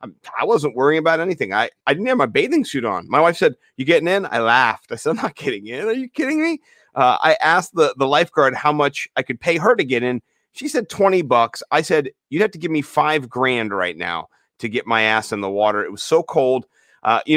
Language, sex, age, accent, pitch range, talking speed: English, male, 30-49, American, 135-185 Hz, 255 wpm